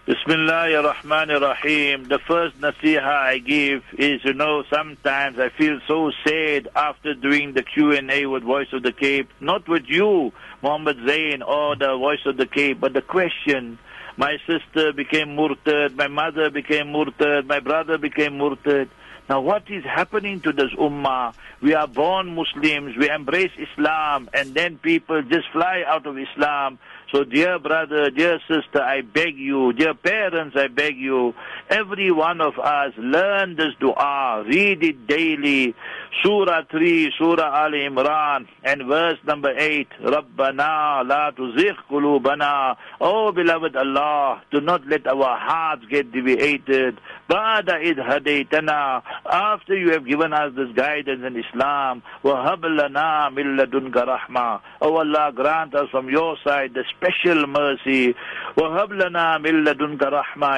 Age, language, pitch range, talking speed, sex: 60-79, English, 135-155 Hz, 140 wpm, male